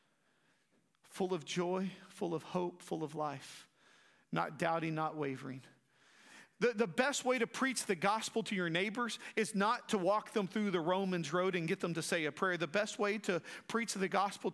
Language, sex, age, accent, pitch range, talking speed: English, male, 40-59, American, 155-200 Hz, 195 wpm